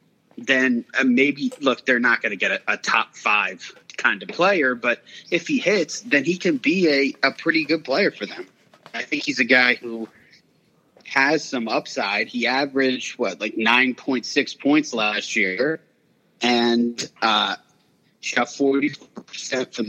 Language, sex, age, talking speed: English, male, 30-49, 155 wpm